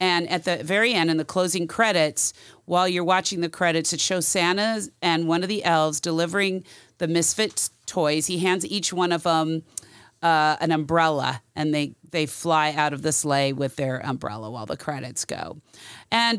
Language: English